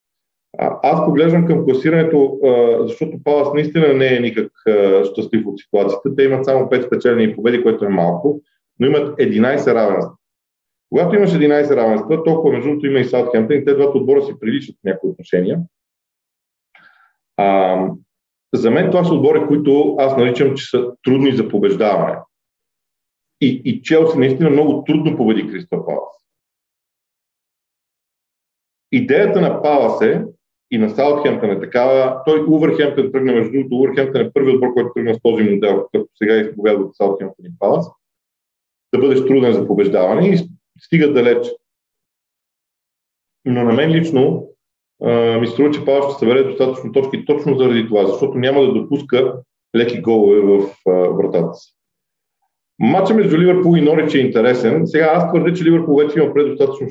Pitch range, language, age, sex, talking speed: 120-155 Hz, Bulgarian, 40-59, male, 150 wpm